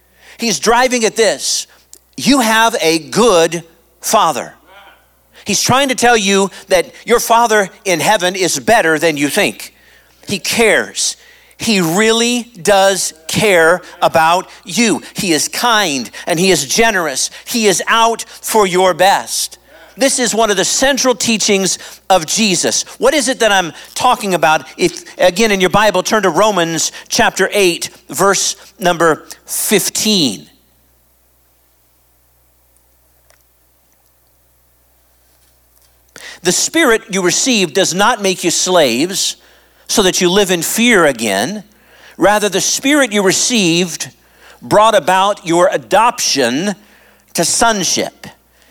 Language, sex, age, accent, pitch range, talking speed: English, male, 50-69, American, 155-225 Hz, 125 wpm